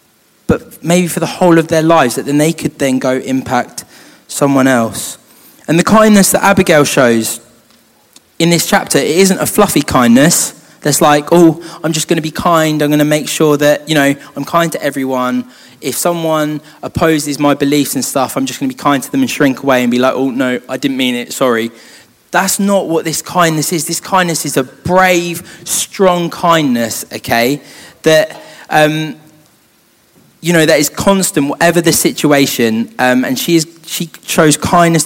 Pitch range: 135-175 Hz